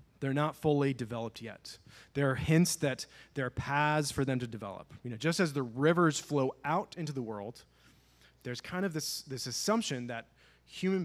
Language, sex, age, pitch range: English, male, 30-49, 105-145 Hz